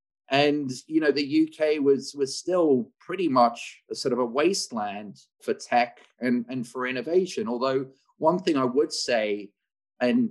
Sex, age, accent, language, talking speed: male, 40-59, British, English, 165 wpm